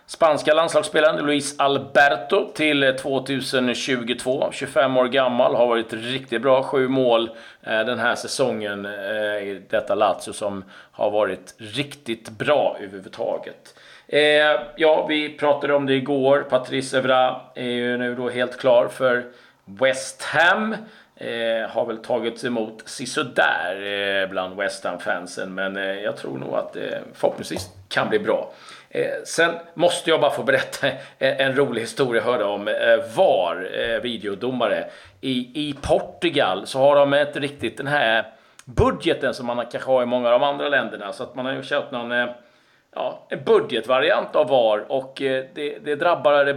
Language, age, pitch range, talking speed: Swedish, 40-59, 120-150 Hz, 150 wpm